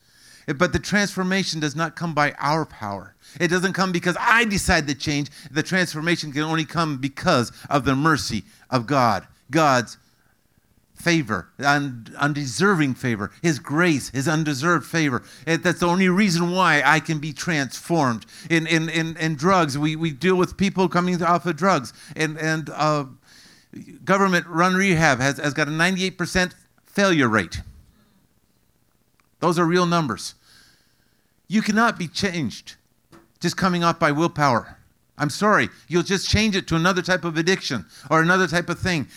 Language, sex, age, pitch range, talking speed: English, male, 50-69, 140-180 Hz, 160 wpm